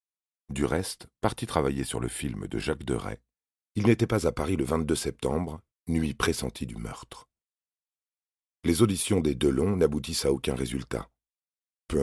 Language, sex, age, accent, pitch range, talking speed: French, male, 40-59, French, 65-95 Hz, 155 wpm